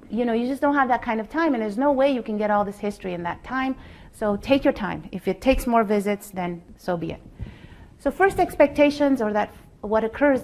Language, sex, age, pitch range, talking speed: English, female, 30-49, 200-245 Hz, 240 wpm